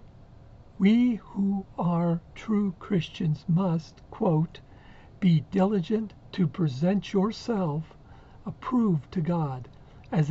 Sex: male